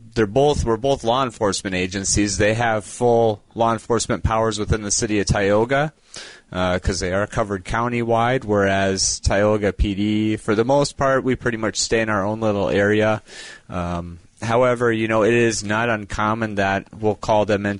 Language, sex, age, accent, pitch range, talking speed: English, male, 30-49, American, 95-115 Hz, 180 wpm